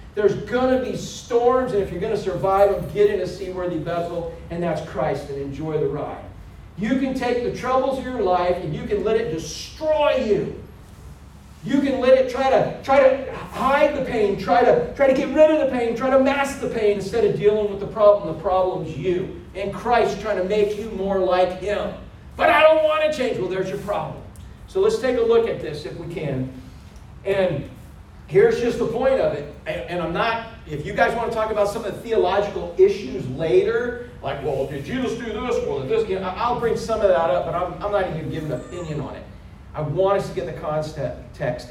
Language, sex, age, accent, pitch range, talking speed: English, male, 40-59, American, 180-265 Hz, 225 wpm